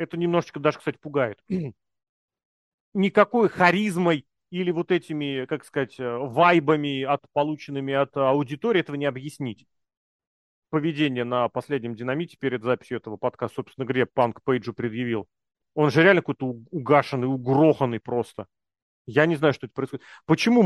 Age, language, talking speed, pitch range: 30-49, Russian, 135 wpm, 135-175 Hz